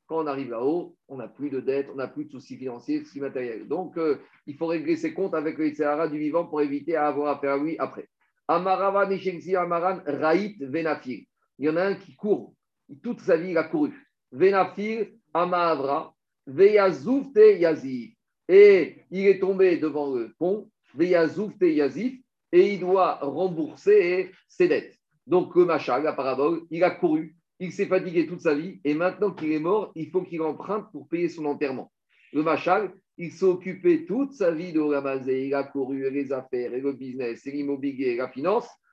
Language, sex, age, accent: French, male, 50-69, French